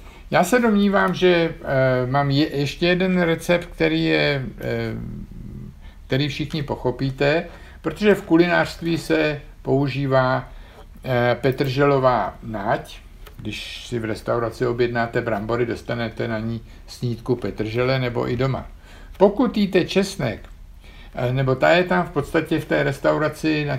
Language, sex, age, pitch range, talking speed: Czech, male, 60-79, 110-155 Hz, 130 wpm